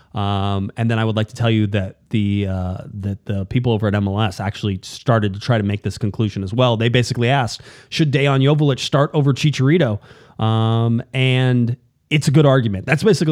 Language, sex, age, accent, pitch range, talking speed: English, male, 30-49, American, 110-140 Hz, 205 wpm